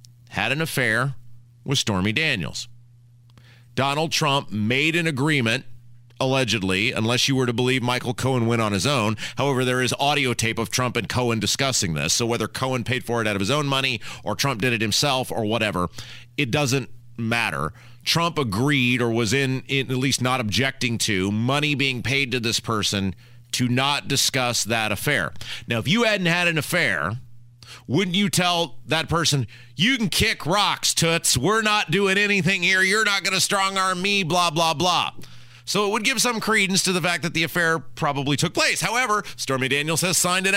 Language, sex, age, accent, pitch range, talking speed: English, male, 30-49, American, 120-190 Hz, 190 wpm